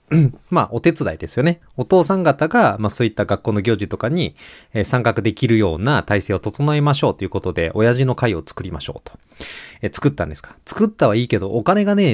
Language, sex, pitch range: Japanese, male, 100-150 Hz